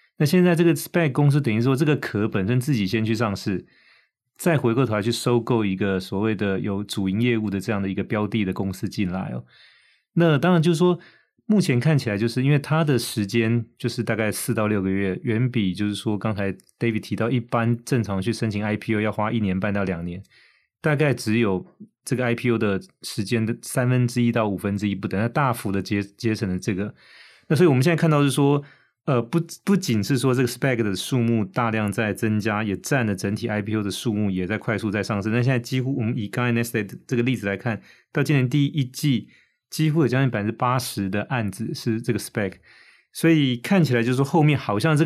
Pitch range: 105-135 Hz